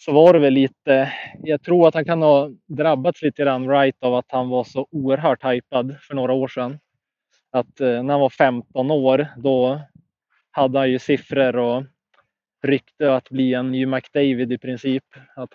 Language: Swedish